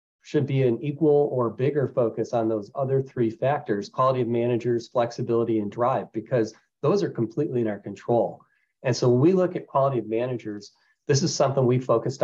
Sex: male